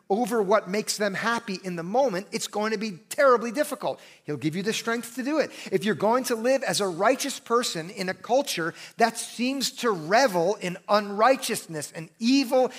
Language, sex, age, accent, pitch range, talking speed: English, male, 40-59, American, 190-250 Hz, 195 wpm